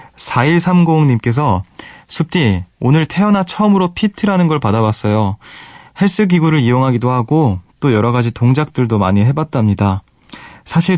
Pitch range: 110-150 Hz